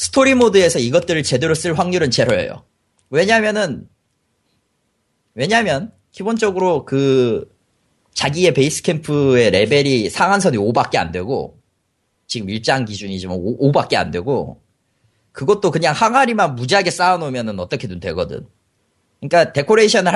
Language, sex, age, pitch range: Korean, male, 30-49, 130-205 Hz